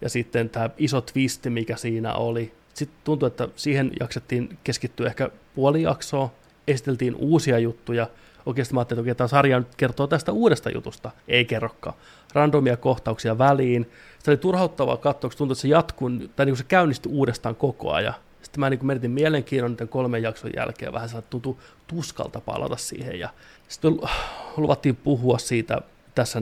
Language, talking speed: Finnish, 160 wpm